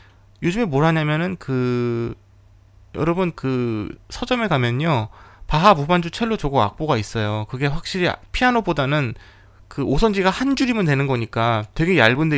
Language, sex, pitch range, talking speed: English, male, 110-185 Hz, 120 wpm